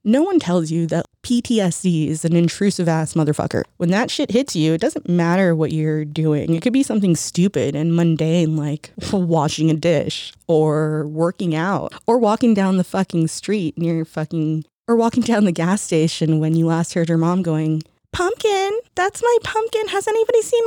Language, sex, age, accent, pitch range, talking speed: English, female, 20-39, American, 165-245 Hz, 190 wpm